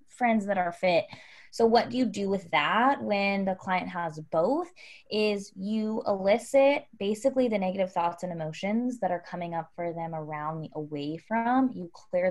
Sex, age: female, 20-39